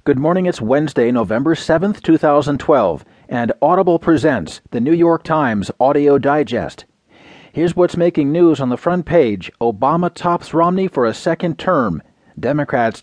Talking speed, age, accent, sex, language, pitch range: 145 wpm, 40-59, American, male, English, 125-170 Hz